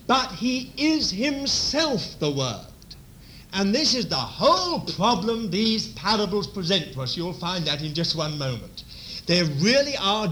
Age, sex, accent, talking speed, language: 50-69, male, British, 155 wpm, English